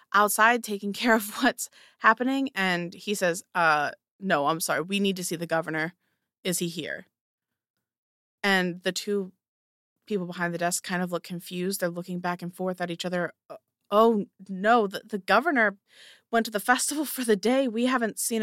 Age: 20-39